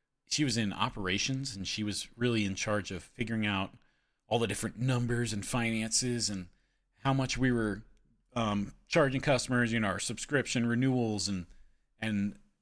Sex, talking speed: male, 160 wpm